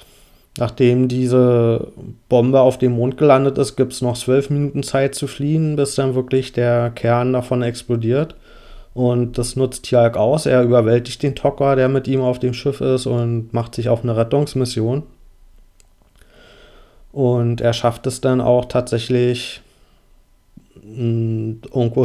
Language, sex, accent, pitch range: German, male, German, 115-130 Hz